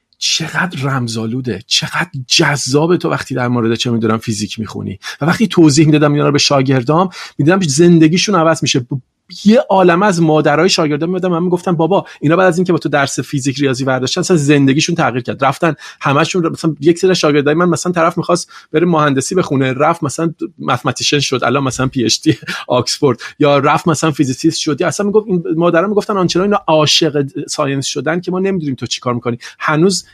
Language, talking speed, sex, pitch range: Persian, 180 wpm, male, 140-185 Hz